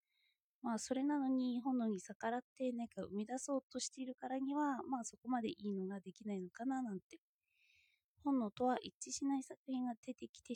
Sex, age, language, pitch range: female, 20-39, Japanese, 205-275 Hz